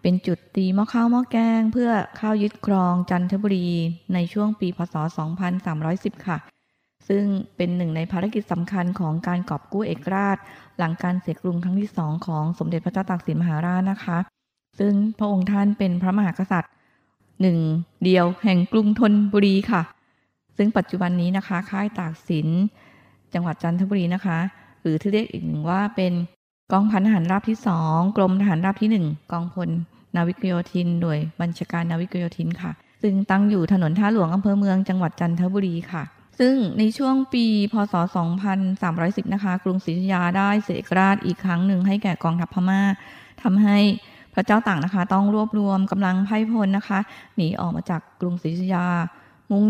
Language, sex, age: Thai, female, 20-39